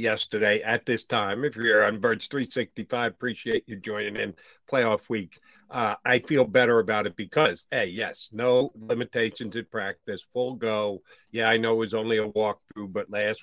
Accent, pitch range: American, 105-150 Hz